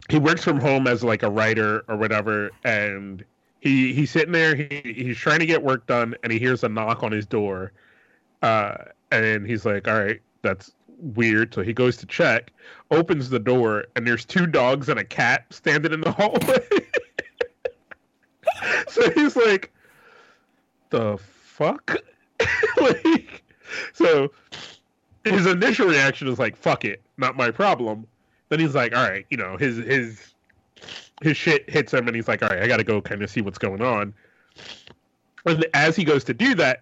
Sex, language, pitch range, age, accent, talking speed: male, English, 110-160 Hz, 30-49, American, 175 wpm